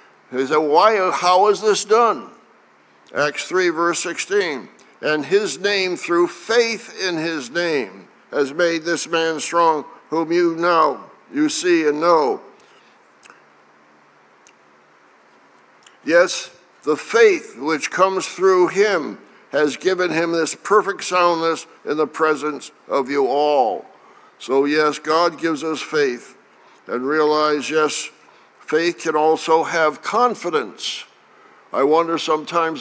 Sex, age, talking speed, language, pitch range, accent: male, 60-79, 125 wpm, English, 150-180 Hz, American